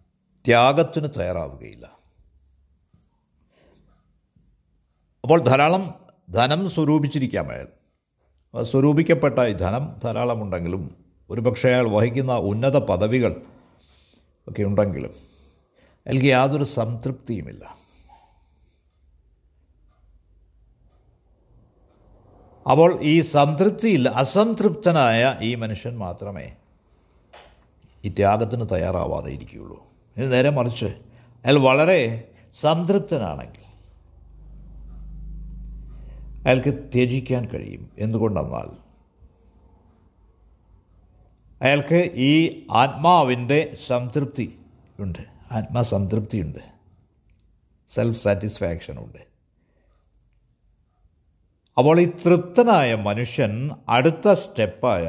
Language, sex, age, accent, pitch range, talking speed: Malayalam, male, 60-79, native, 90-135 Hz, 60 wpm